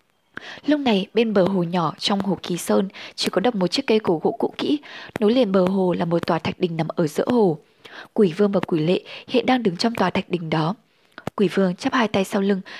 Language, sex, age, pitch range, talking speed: Vietnamese, female, 20-39, 180-230 Hz, 250 wpm